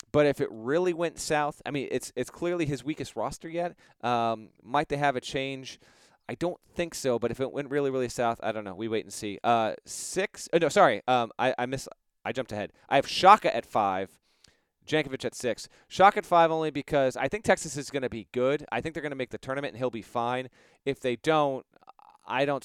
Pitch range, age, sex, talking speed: 115-155 Hz, 30-49, male, 235 wpm